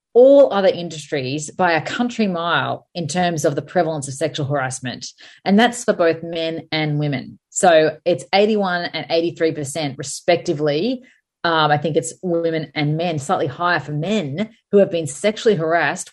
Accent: Australian